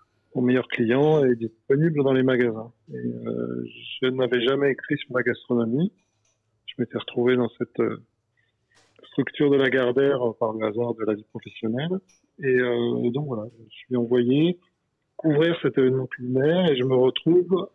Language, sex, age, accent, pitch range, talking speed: French, male, 40-59, French, 120-145 Hz, 170 wpm